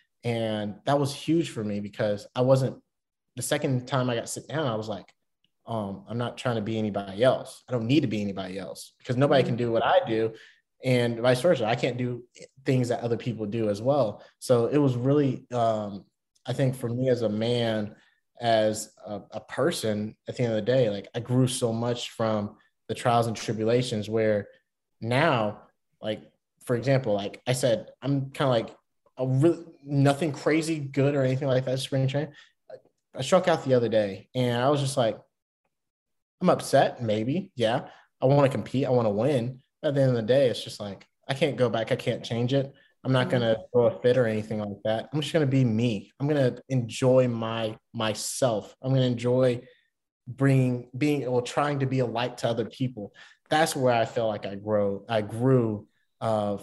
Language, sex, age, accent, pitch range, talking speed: English, male, 20-39, American, 110-135 Hz, 205 wpm